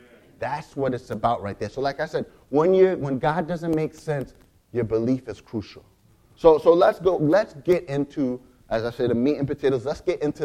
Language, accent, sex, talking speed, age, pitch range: English, American, male, 220 wpm, 30-49, 105-150 Hz